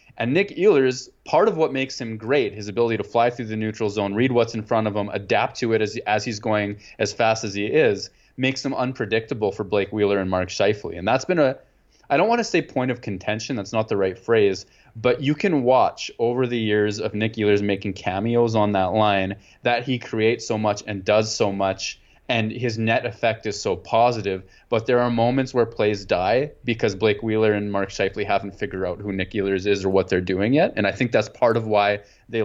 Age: 20-39